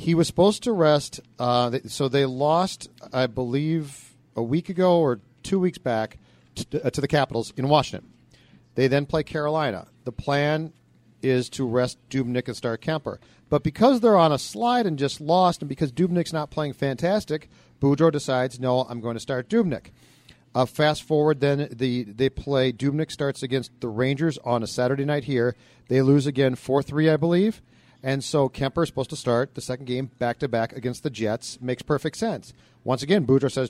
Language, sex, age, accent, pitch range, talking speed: English, male, 40-59, American, 125-155 Hz, 185 wpm